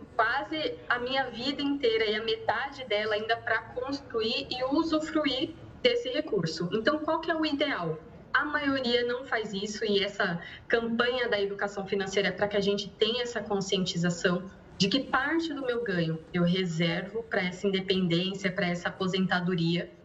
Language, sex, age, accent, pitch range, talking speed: Portuguese, female, 20-39, Brazilian, 195-270 Hz, 165 wpm